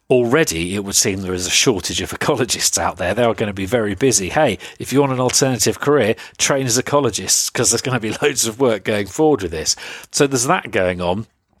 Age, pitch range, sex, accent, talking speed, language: 40-59, 105-135 Hz, male, British, 240 wpm, English